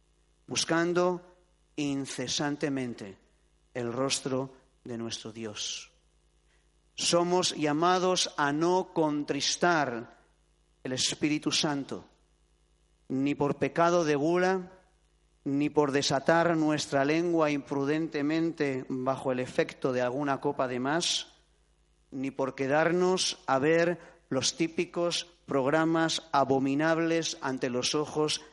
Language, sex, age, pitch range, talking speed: Spanish, male, 40-59, 125-170 Hz, 95 wpm